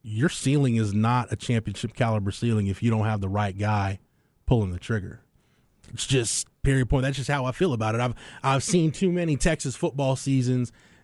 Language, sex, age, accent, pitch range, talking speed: English, male, 30-49, American, 110-150 Hz, 200 wpm